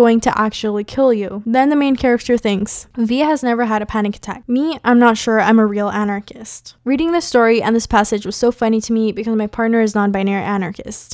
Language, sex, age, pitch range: English, female, 10-29, 215-255 Hz